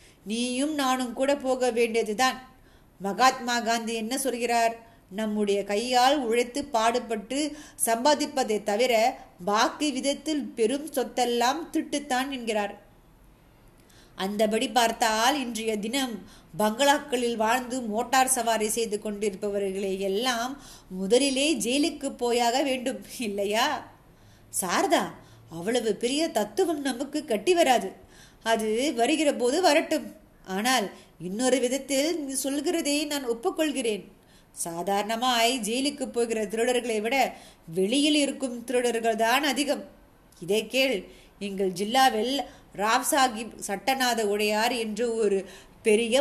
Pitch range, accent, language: 220-270 Hz, native, Tamil